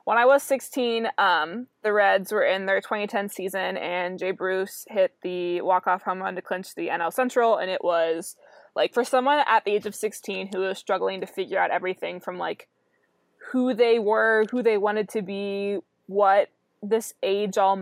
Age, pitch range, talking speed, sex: 20-39, 185-215 Hz, 190 wpm, female